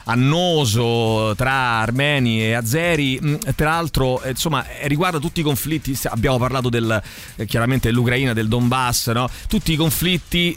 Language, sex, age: Italian, male, 30-49